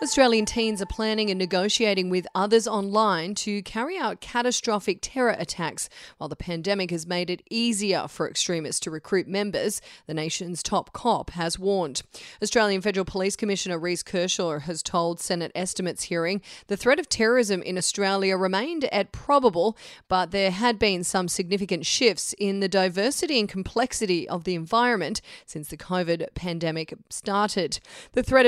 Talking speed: 160 wpm